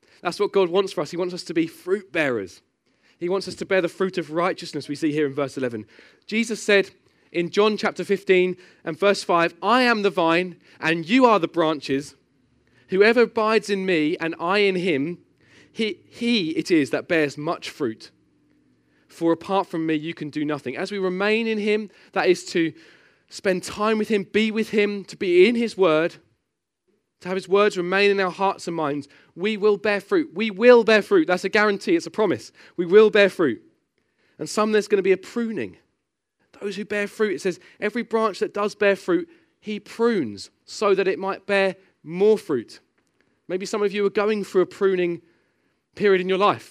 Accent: British